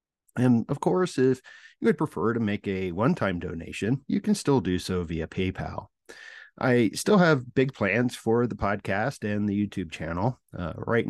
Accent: American